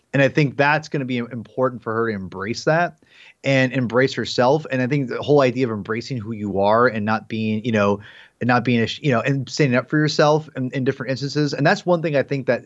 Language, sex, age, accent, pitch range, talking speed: English, male, 30-49, American, 115-150 Hz, 255 wpm